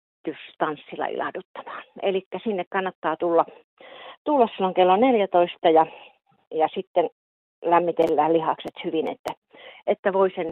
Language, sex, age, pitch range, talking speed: Finnish, female, 40-59, 155-195 Hz, 105 wpm